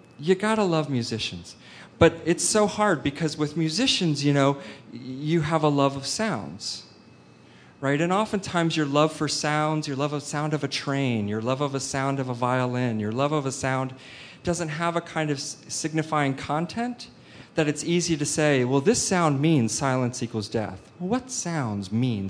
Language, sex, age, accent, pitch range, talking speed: English, male, 40-59, American, 125-165 Hz, 185 wpm